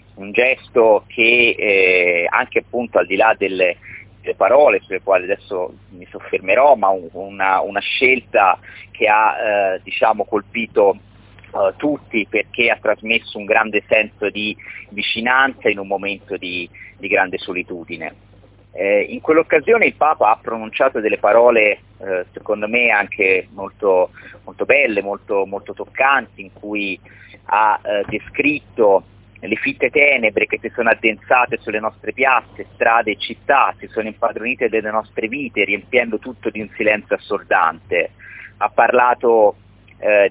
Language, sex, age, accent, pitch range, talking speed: Italian, male, 30-49, native, 100-150 Hz, 140 wpm